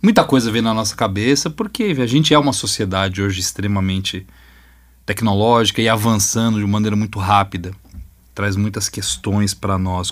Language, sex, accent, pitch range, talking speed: Portuguese, male, Brazilian, 95-125 Hz, 160 wpm